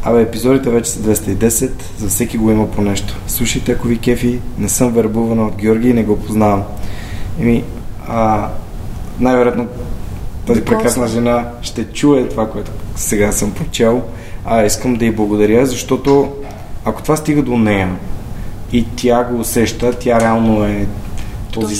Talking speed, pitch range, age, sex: 155 wpm, 105-125 Hz, 20-39, male